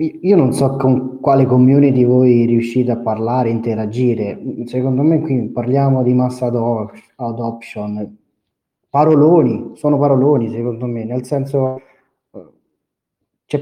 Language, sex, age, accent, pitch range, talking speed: Italian, male, 20-39, native, 125-145 Hz, 115 wpm